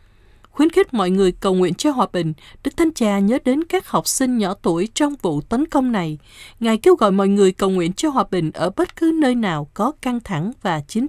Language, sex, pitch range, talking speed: Vietnamese, female, 190-260 Hz, 240 wpm